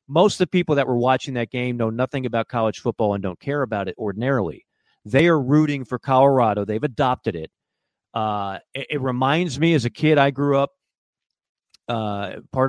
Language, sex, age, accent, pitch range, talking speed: English, male, 40-59, American, 115-145 Hz, 195 wpm